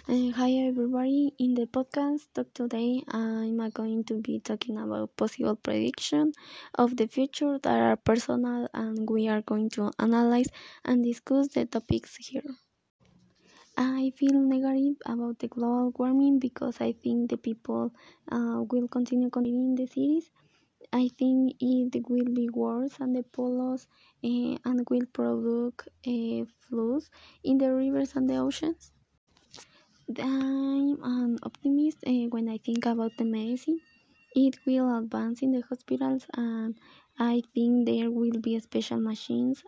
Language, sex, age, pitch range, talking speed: Spanish, female, 20-39, 230-265 Hz, 145 wpm